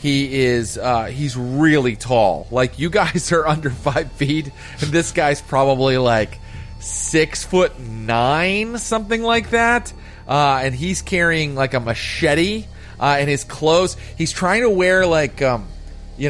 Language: English